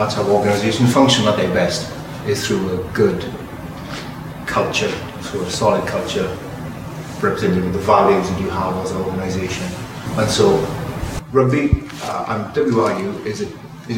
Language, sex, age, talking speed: English, male, 30-49, 145 wpm